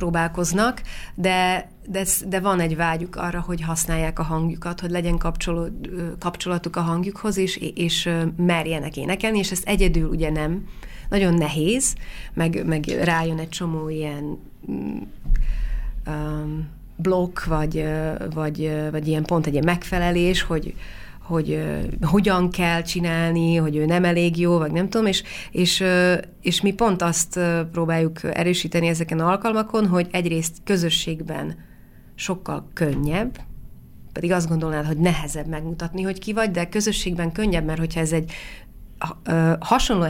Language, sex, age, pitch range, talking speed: Hungarian, female, 30-49, 160-185 Hz, 135 wpm